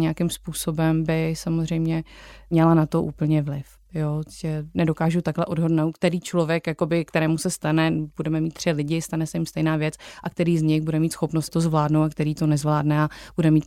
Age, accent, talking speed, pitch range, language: 30-49, native, 200 wpm, 155-170 Hz, Czech